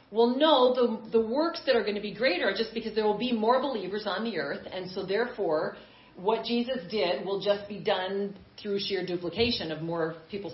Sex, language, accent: female, English, American